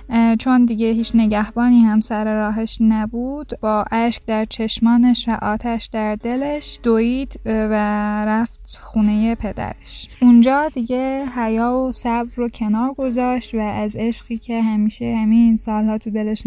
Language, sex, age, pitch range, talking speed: Persian, female, 10-29, 215-245 Hz, 140 wpm